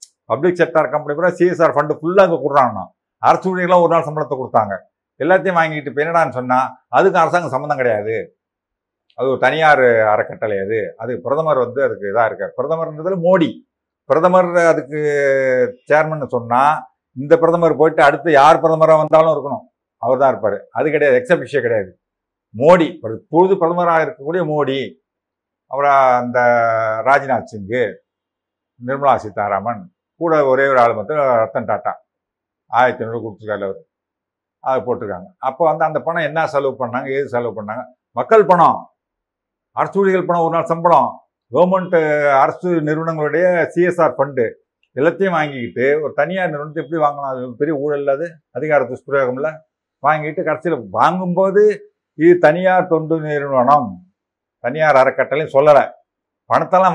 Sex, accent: male, native